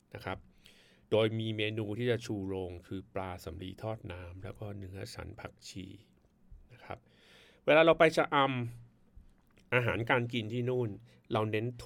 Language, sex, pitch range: Thai, male, 95-120 Hz